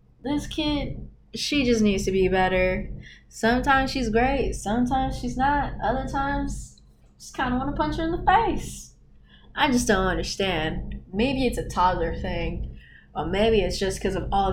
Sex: female